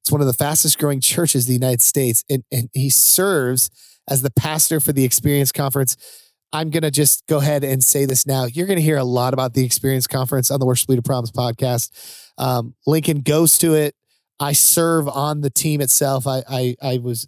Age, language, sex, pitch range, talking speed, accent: 30-49, English, male, 130-155 Hz, 220 wpm, American